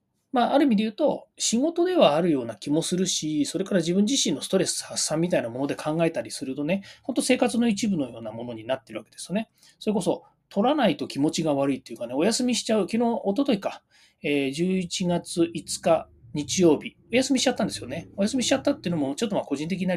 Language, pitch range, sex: Japanese, 145-225 Hz, male